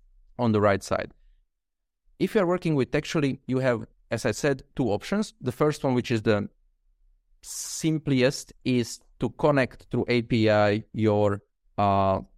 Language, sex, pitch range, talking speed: English, male, 100-125 Hz, 150 wpm